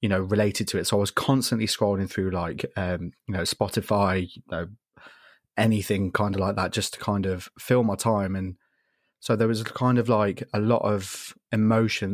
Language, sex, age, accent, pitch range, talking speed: English, male, 20-39, British, 95-110 Hz, 210 wpm